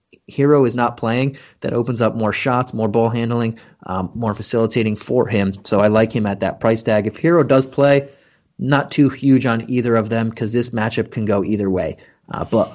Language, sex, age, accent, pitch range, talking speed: English, male, 30-49, American, 110-125 Hz, 210 wpm